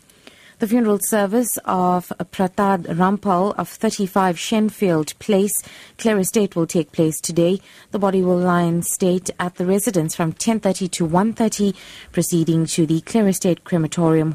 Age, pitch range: 30-49, 165-200 Hz